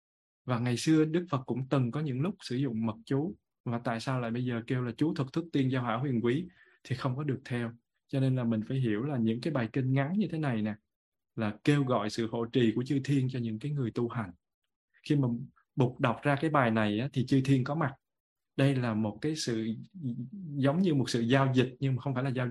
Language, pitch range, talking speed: Vietnamese, 115-140 Hz, 260 wpm